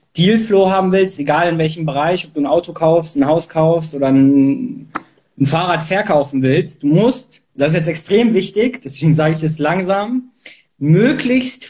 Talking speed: 175 wpm